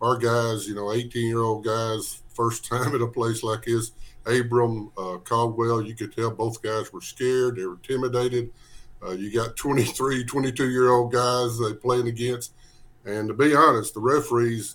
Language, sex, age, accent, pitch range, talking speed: English, male, 50-69, American, 110-125 Hz, 165 wpm